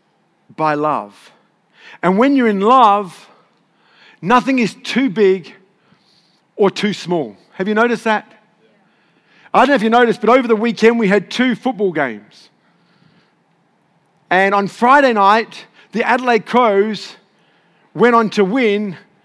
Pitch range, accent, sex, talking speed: 210-270 Hz, Australian, male, 135 wpm